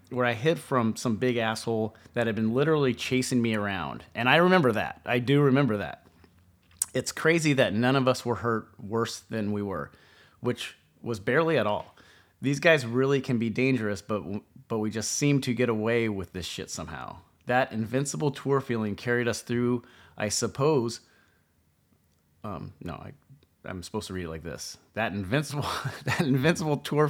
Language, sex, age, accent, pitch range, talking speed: English, male, 30-49, American, 95-130 Hz, 180 wpm